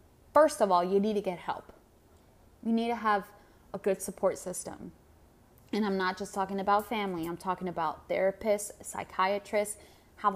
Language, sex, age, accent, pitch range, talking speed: English, female, 20-39, American, 190-250 Hz, 170 wpm